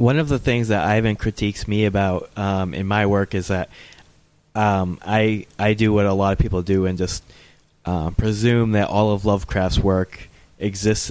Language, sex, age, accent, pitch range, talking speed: English, male, 20-39, American, 95-105 Hz, 190 wpm